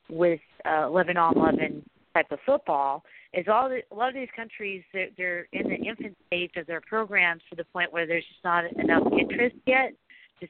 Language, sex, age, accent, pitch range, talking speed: English, female, 40-59, American, 160-195 Hz, 195 wpm